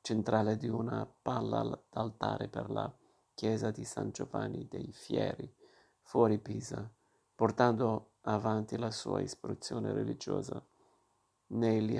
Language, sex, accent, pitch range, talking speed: Italian, male, native, 110-120 Hz, 110 wpm